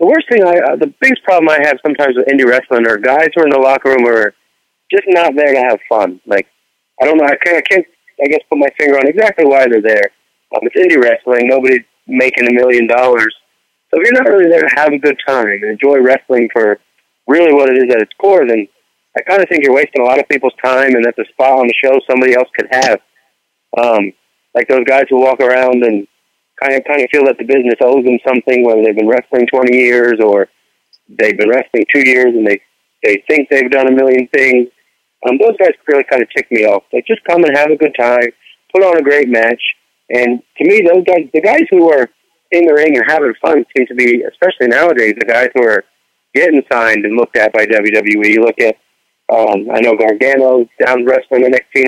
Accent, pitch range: American, 120-150 Hz